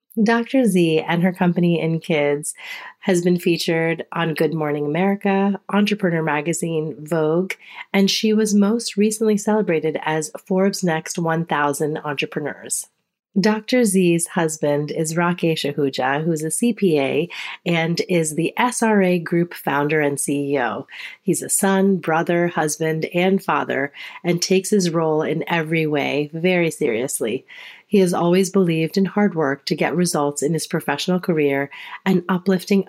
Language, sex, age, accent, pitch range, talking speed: English, female, 30-49, American, 155-195 Hz, 140 wpm